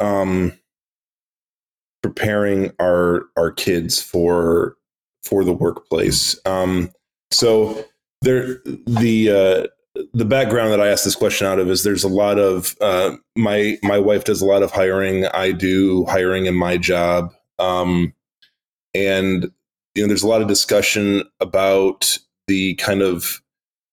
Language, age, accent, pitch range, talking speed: English, 20-39, American, 95-115 Hz, 140 wpm